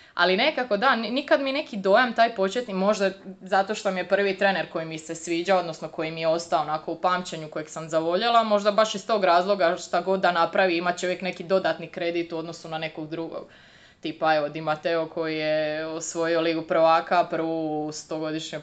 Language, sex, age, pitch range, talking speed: Croatian, female, 20-39, 165-205 Hz, 195 wpm